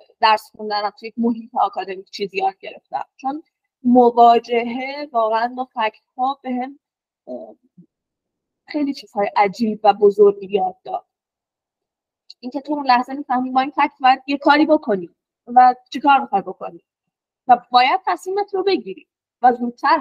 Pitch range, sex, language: 235-305 Hz, female, Persian